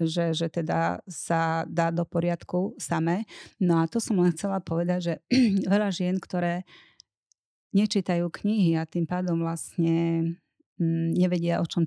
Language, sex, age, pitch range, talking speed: Slovak, female, 30-49, 160-180 Hz, 145 wpm